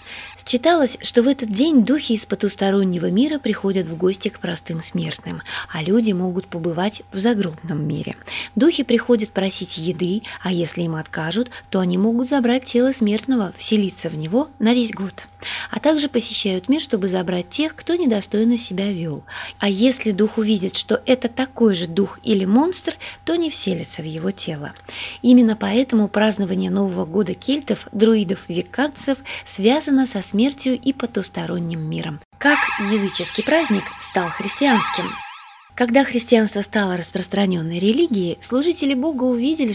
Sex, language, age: female, Russian, 20-39